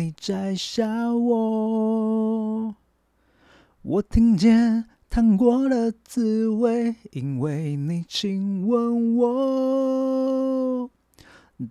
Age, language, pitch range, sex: 30-49, Chinese, 215-275 Hz, male